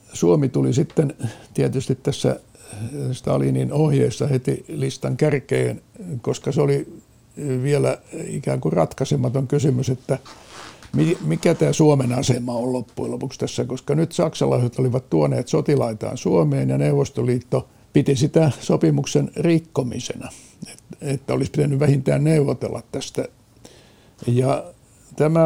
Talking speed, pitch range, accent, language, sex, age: 115 wpm, 125-145 Hz, native, Finnish, male, 60-79